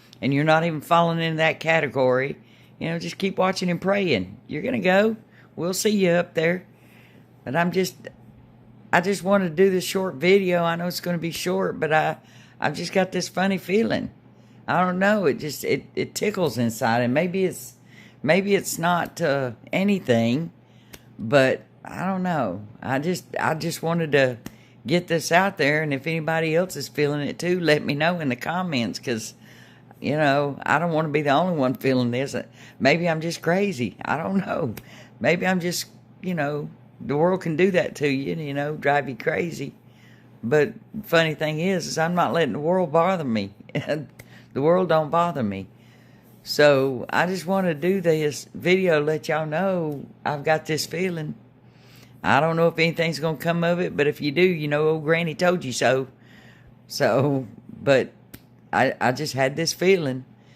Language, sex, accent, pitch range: English, female, American, 135-180 Hz